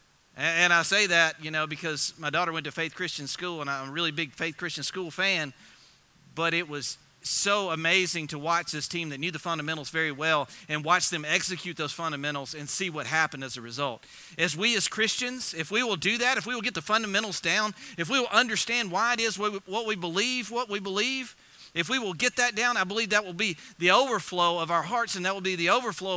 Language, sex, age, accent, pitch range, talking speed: English, male, 40-59, American, 165-215 Hz, 235 wpm